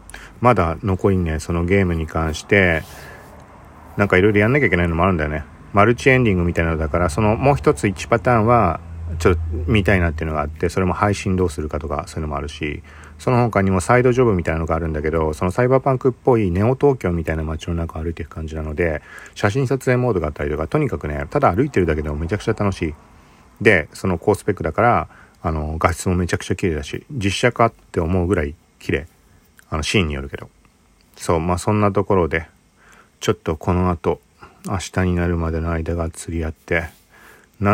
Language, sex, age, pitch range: Japanese, male, 40-59, 80-100 Hz